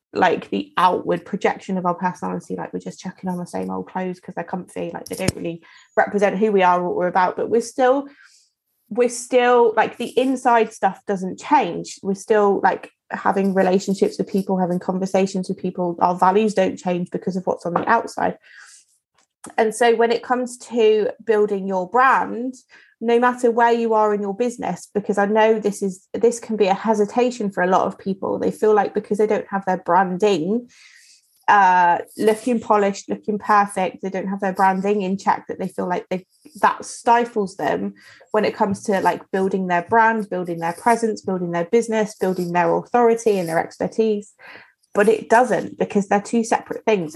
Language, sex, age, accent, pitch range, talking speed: English, female, 20-39, British, 185-225 Hz, 190 wpm